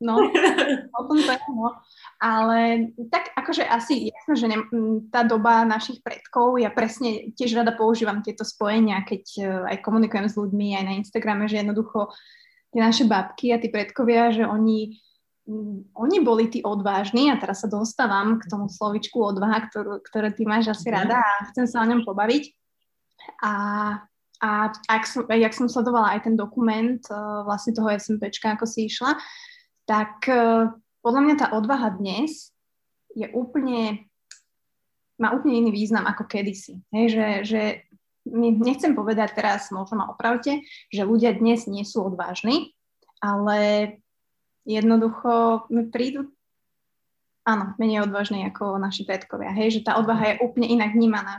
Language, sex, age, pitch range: Slovak, female, 20-39, 210-240 Hz